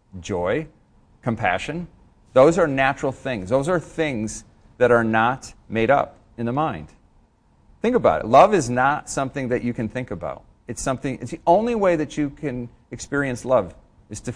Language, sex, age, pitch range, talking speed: English, male, 40-59, 100-130 Hz, 175 wpm